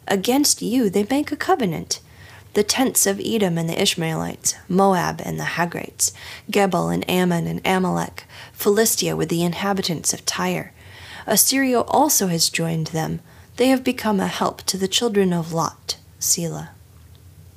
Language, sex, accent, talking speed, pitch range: English, female, American, 150 wpm, 155-200 Hz